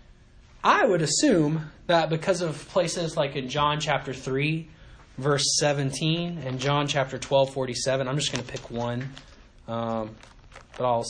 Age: 20-39